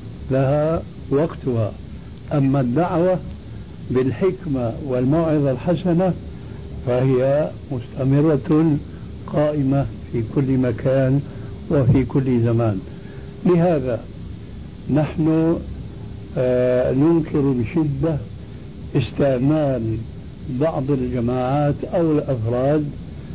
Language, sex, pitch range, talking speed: Arabic, male, 125-150 Hz, 65 wpm